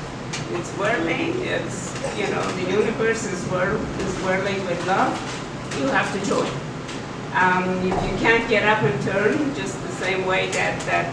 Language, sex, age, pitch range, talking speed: English, female, 50-69, 175-210 Hz, 155 wpm